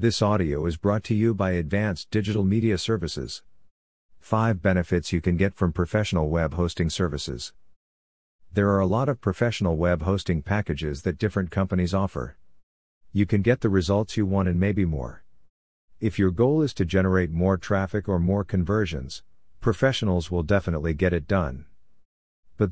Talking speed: 165 wpm